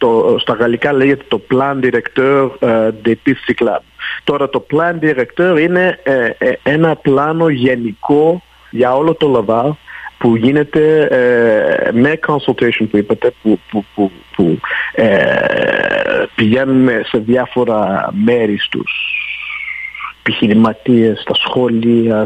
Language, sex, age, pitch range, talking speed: Greek, male, 50-69, 115-150 Hz, 120 wpm